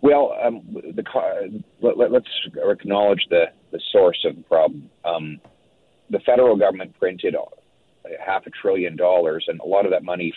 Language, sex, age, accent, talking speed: English, male, 40-59, American, 145 wpm